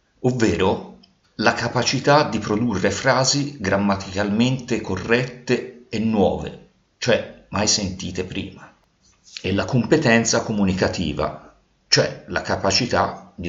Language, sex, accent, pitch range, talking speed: Italian, male, native, 95-140 Hz, 100 wpm